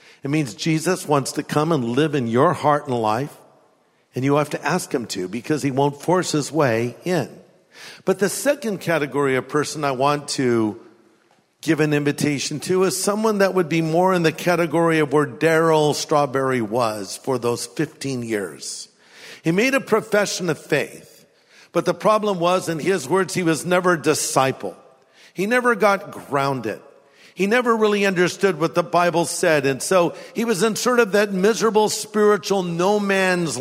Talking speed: 180 wpm